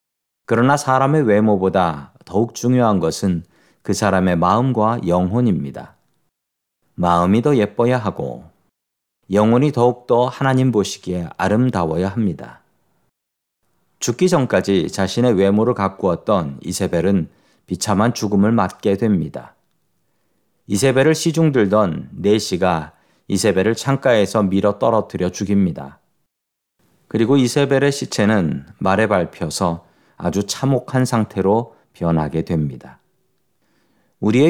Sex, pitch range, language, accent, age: male, 95-125 Hz, Korean, native, 40-59